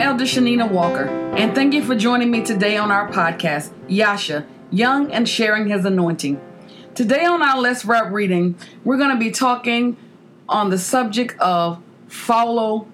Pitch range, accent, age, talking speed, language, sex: 205-270 Hz, American, 40-59, 160 wpm, English, female